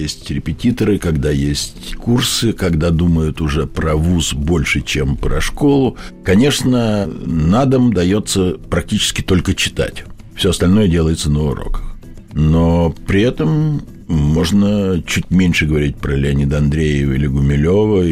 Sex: male